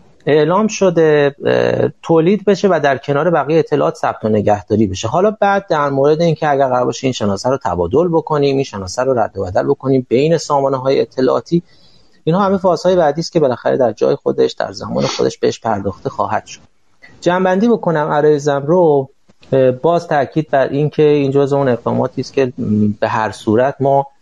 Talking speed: 170 wpm